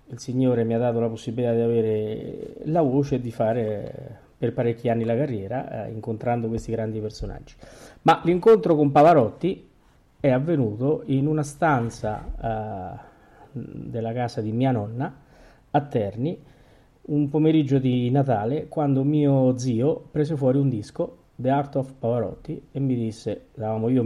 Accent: native